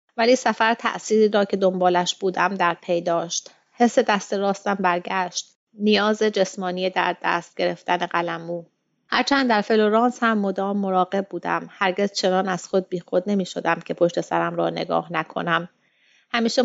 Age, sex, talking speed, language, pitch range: 30-49, female, 150 wpm, Persian, 175-215 Hz